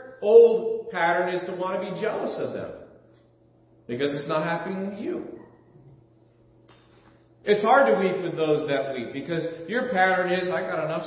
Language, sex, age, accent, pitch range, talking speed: English, male, 40-59, American, 115-170 Hz, 170 wpm